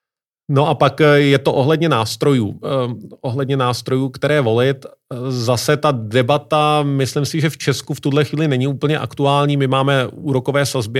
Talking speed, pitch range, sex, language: 160 wpm, 125-145 Hz, male, Czech